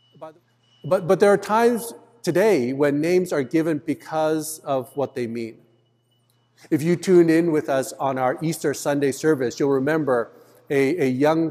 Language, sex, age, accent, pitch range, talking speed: English, male, 50-69, American, 120-160 Hz, 160 wpm